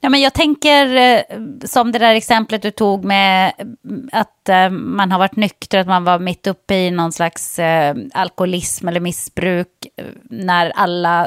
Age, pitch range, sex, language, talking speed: 30-49, 175-220 Hz, female, English, 155 wpm